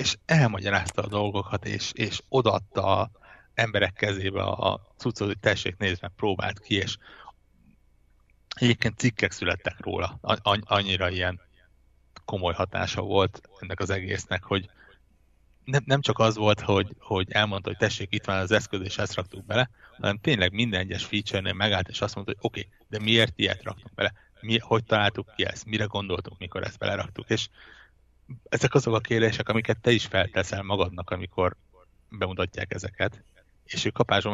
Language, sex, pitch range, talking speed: Hungarian, male, 95-110 Hz, 165 wpm